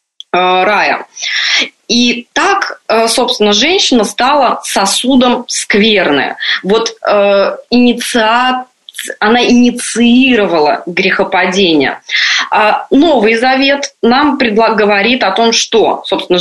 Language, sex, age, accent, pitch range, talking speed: Russian, female, 20-39, native, 190-245 Hz, 80 wpm